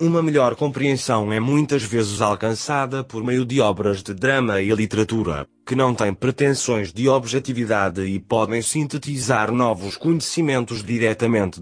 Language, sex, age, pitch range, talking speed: Portuguese, male, 20-39, 105-130 Hz, 140 wpm